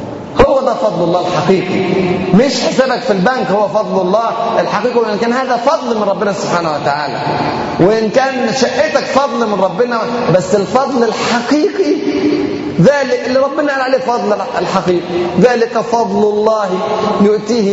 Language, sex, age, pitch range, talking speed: Arabic, male, 30-49, 165-250 Hz, 135 wpm